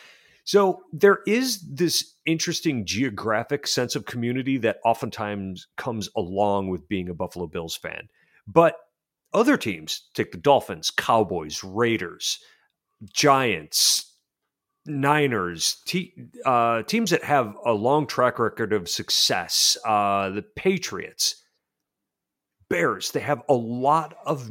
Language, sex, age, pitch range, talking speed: English, male, 40-59, 100-155 Hz, 120 wpm